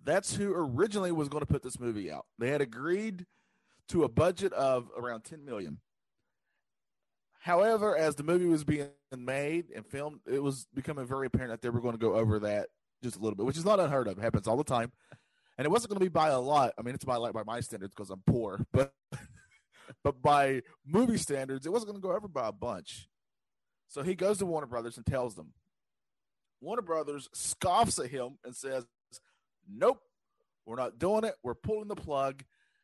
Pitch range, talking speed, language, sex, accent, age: 125-190 Hz, 210 wpm, English, male, American, 30-49